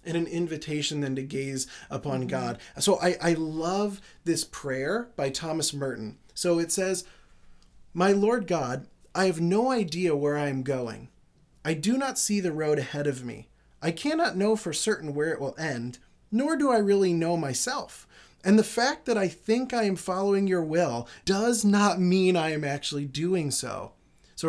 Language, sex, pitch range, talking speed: English, male, 140-185 Hz, 185 wpm